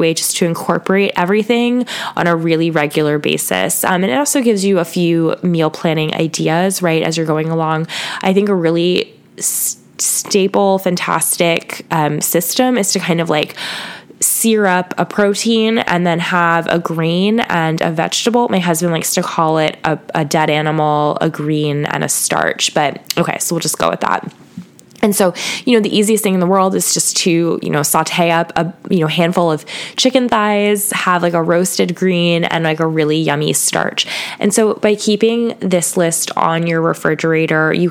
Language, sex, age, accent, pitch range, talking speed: English, female, 10-29, American, 155-185 Hz, 185 wpm